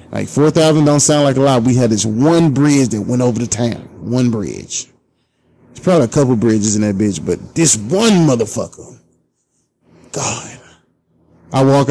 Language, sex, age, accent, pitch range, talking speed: English, male, 30-49, American, 110-150 Hz, 170 wpm